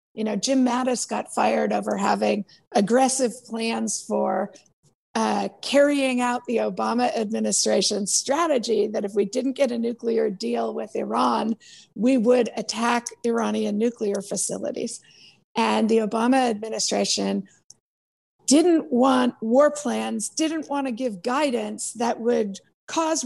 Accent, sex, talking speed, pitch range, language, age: American, female, 130 wpm, 205-245 Hz, English, 50-69